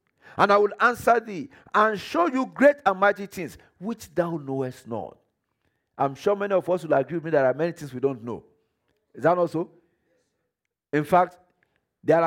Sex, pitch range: male, 170-245 Hz